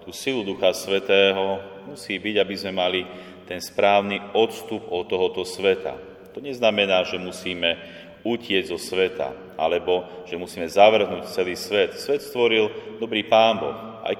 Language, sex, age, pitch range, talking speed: Slovak, male, 40-59, 90-110 Hz, 145 wpm